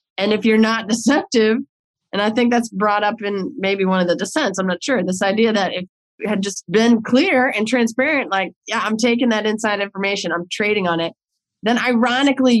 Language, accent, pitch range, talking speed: English, American, 195-240 Hz, 205 wpm